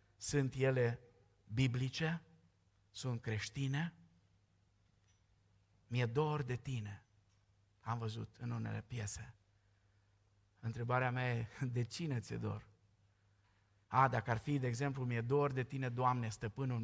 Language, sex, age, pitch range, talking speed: Romanian, male, 50-69, 105-155 Hz, 115 wpm